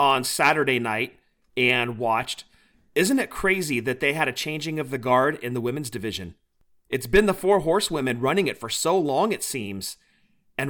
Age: 40-59